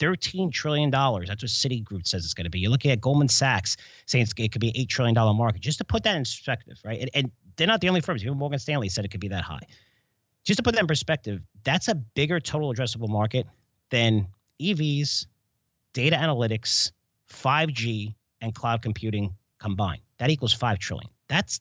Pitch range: 105-140 Hz